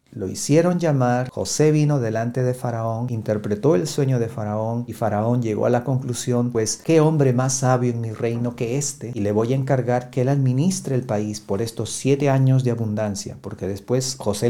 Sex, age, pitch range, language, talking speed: male, 40-59, 115-150 Hz, Spanish, 200 wpm